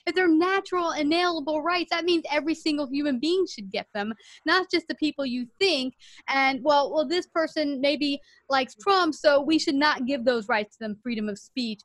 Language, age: English, 30-49